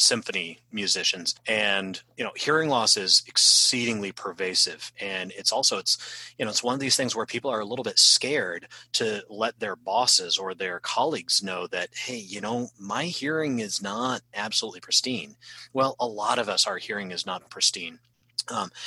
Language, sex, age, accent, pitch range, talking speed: English, male, 30-49, American, 105-130 Hz, 180 wpm